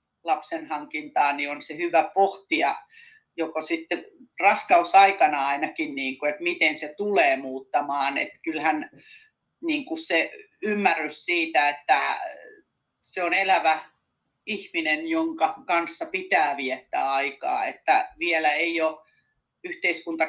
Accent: native